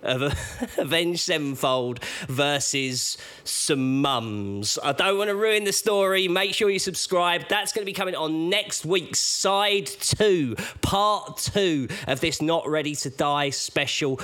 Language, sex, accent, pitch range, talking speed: English, male, British, 155-200 Hz, 155 wpm